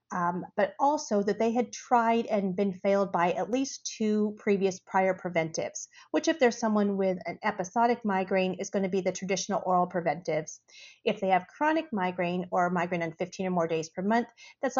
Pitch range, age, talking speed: 185-225 Hz, 40-59, 195 wpm